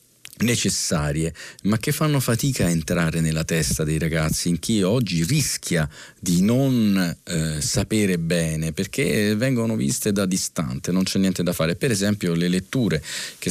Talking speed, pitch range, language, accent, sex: 160 wpm, 80-100 Hz, Italian, native, male